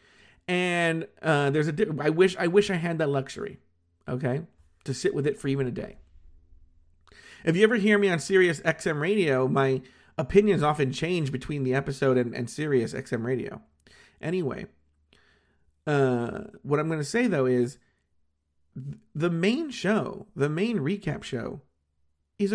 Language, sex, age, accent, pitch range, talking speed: English, male, 40-59, American, 130-180 Hz, 160 wpm